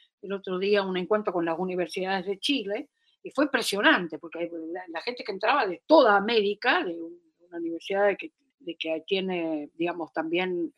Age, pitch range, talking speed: 50-69, 175-260 Hz, 185 wpm